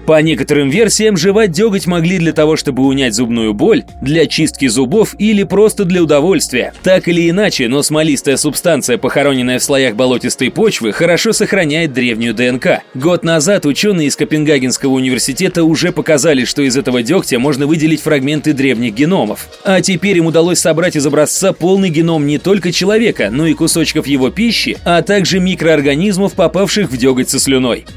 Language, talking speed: Russian, 165 wpm